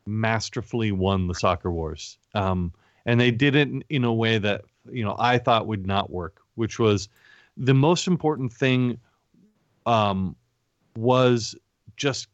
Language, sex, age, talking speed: English, male, 30-49, 150 wpm